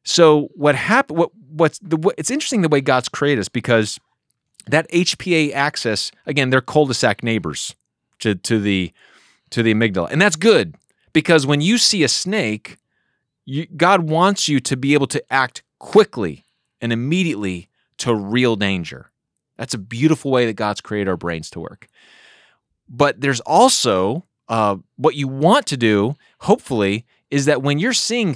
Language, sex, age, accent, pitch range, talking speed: English, male, 30-49, American, 115-150 Hz, 165 wpm